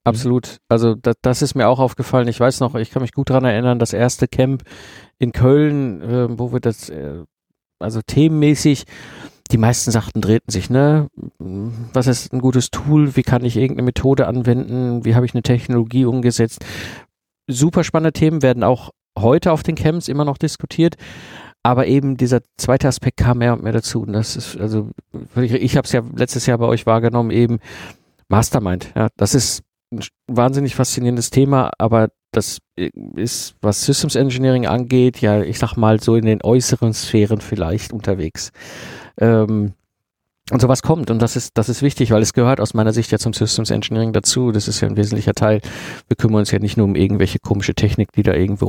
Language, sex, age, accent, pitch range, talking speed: German, male, 50-69, German, 105-130 Hz, 190 wpm